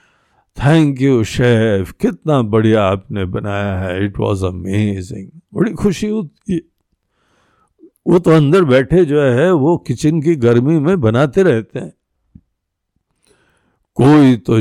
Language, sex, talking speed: Hindi, male, 125 wpm